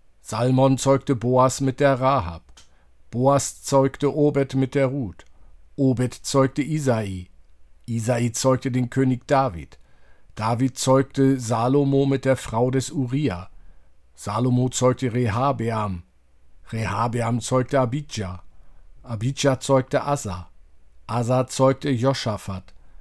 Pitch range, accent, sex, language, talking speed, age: 95-135 Hz, German, male, German, 105 wpm, 50-69